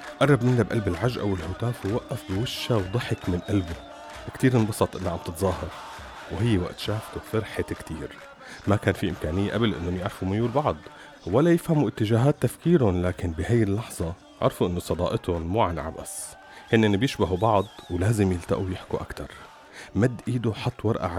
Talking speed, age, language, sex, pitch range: 150 wpm, 30-49, Arabic, male, 90-115 Hz